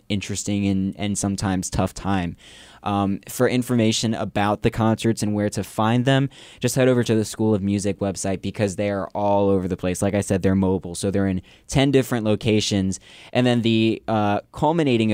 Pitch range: 100-115 Hz